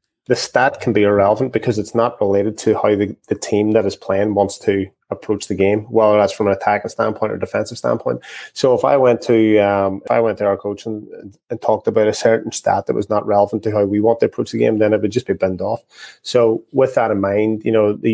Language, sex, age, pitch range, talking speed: English, male, 20-39, 105-115 Hz, 255 wpm